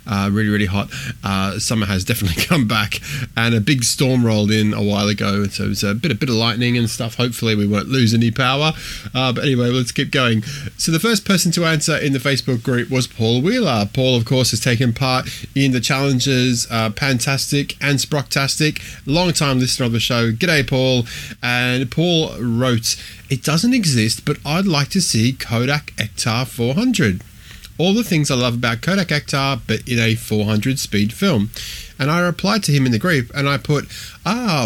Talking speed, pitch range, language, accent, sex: 200 wpm, 110-150 Hz, English, Australian, male